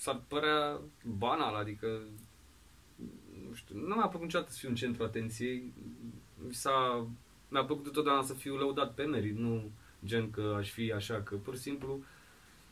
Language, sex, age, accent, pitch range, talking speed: Romanian, male, 20-39, native, 110-145 Hz, 165 wpm